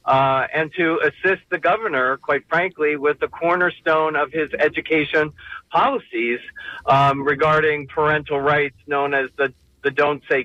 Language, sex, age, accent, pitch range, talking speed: English, male, 50-69, American, 145-200 Hz, 145 wpm